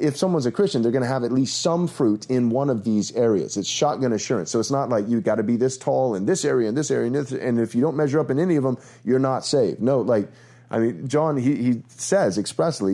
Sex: male